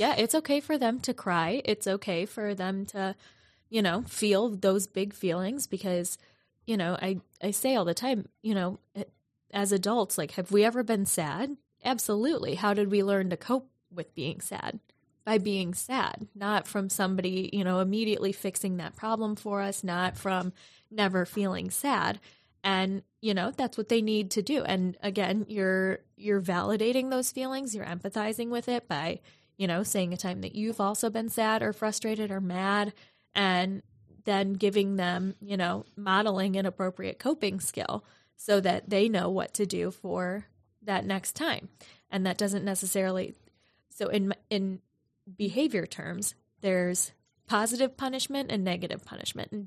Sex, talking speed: female, 170 wpm